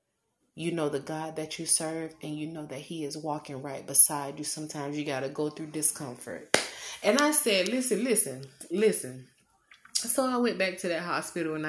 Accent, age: American, 30-49